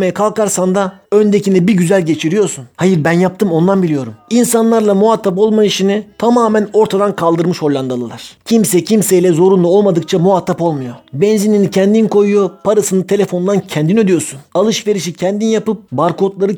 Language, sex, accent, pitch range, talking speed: Turkish, male, native, 170-205 Hz, 130 wpm